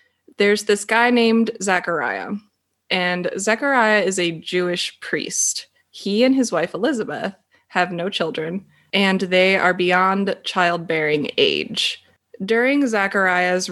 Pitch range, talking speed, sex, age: 175-235 Hz, 120 wpm, female, 20-39